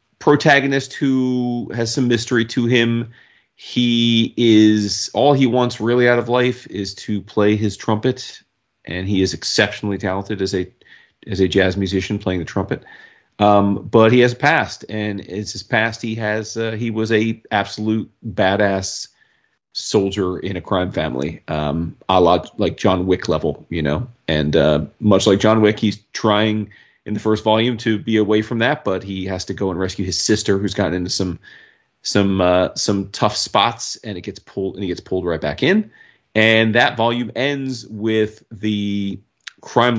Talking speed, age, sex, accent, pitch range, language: 180 wpm, 30-49, male, American, 95-115 Hz, English